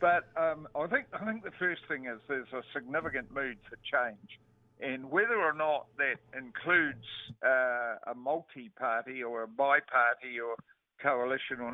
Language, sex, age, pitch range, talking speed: English, male, 60-79, 120-155 Hz, 160 wpm